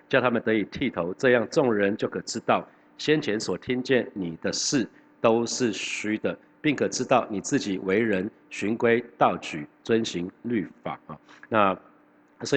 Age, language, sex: 50-69, Chinese, male